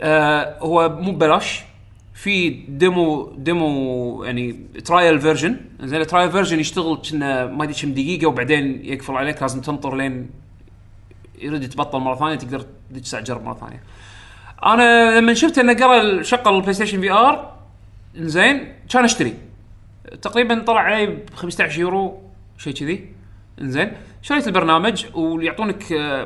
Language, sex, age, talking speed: Arabic, male, 30-49, 130 wpm